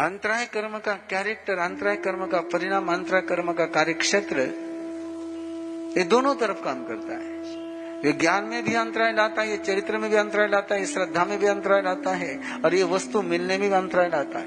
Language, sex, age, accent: Hindi, male, 50-69, native